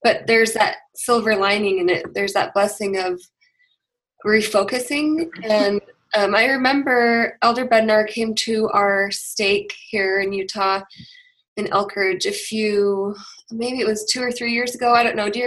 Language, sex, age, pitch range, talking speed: English, female, 20-39, 200-245 Hz, 165 wpm